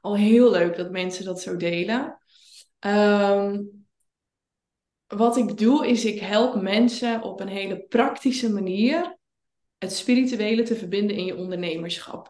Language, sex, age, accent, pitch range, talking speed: Dutch, female, 20-39, Dutch, 185-230 Hz, 135 wpm